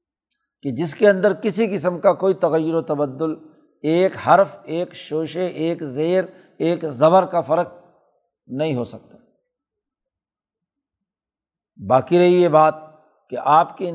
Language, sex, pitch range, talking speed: Urdu, male, 145-170 Hz, 135 wpm